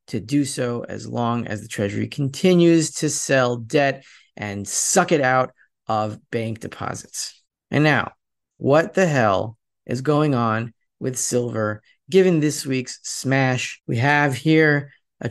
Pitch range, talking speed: 115-145 Hz, 145 wpm